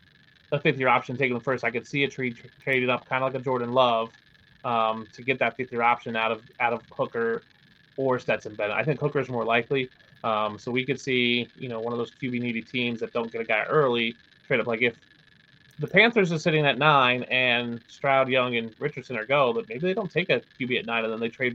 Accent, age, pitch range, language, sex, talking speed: American, 30-49, 120-145 Hz, English, male, 245 wpm